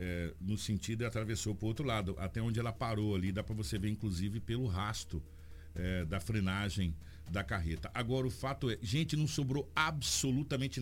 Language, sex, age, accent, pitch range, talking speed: Portuguese, male, 60-79, Brazilian, 85-115 Hz, 190 wpm